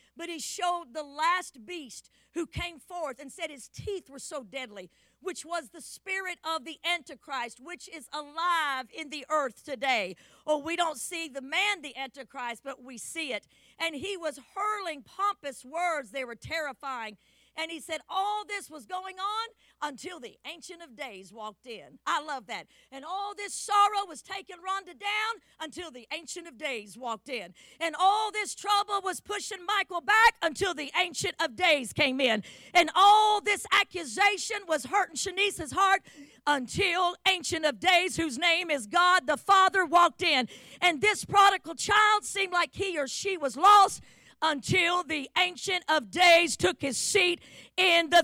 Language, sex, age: English, female, 50-69